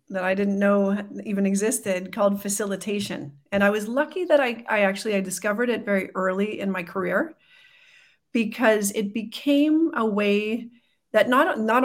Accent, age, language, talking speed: American, 40-59, English, 160 wpm